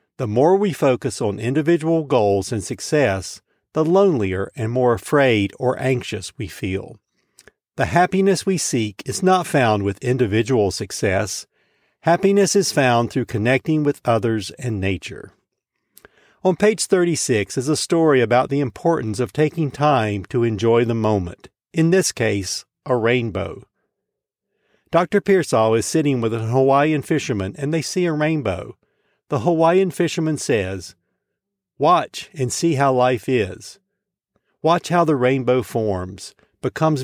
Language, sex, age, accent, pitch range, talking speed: English, male, 50-69, American, 115-160 Hz, 140 wpm